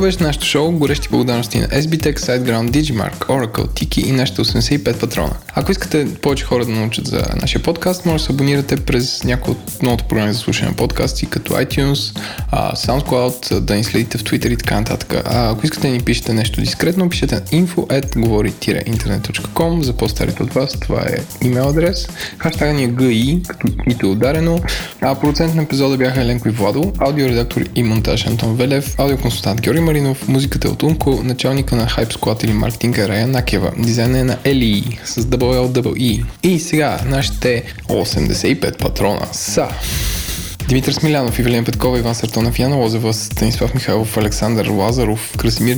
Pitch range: 115-140 Hz